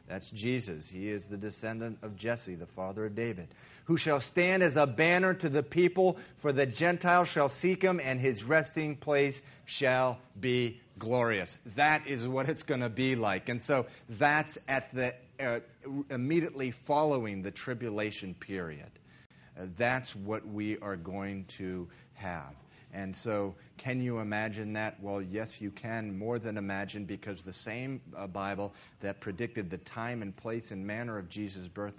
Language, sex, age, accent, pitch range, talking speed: English, male, 40-59, American, 100-140 Hz, 165 wpm